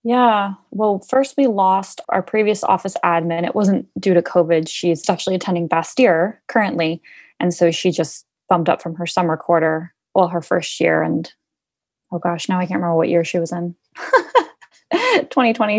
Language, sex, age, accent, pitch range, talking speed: English, female, 20-39, American, 165-190 Hz, 175 wpm